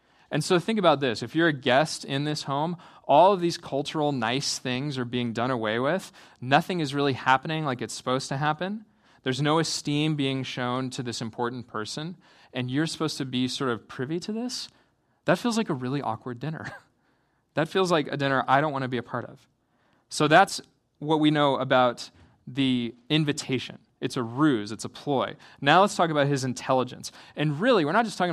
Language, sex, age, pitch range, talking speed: English, male, 20-39, 125-155 Hz, 205 wpm